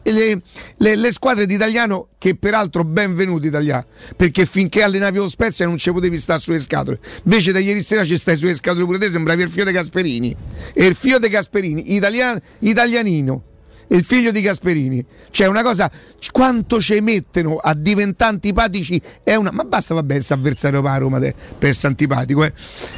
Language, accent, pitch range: Italian, native, 160-210 Hz